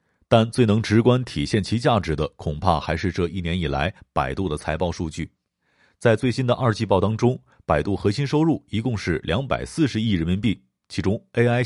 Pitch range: 85-120 Hz